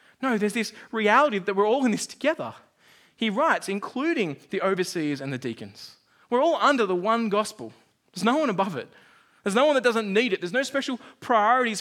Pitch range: 180-235 Hz